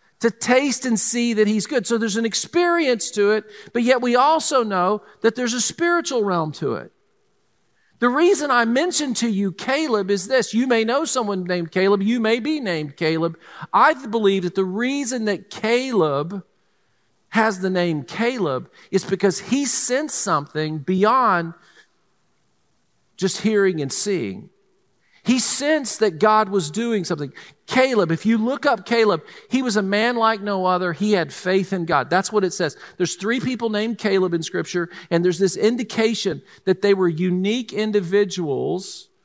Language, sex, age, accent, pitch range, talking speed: English, male, 50-69, American, 175-235 Hz, 170 wpm